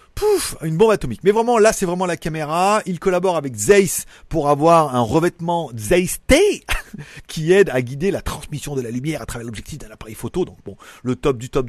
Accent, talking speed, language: French, 215 wpm, French